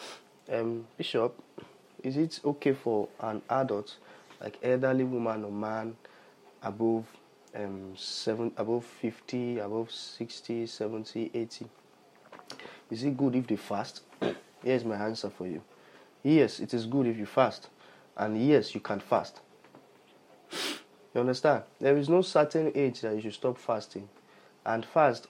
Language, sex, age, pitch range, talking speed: English, male, 20-39, 110-140 Hz, 140 wpm